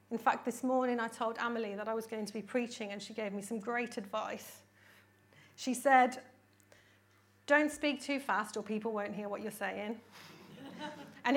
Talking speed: 185 wpm